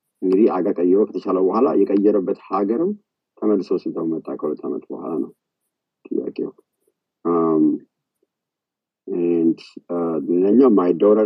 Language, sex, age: English, male, 50-69